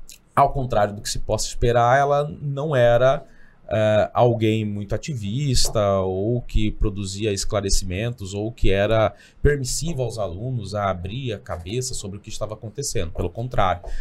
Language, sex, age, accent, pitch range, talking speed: Portuguese, male, 20-39, Brazilian, 100-130 Hz, 145 wpm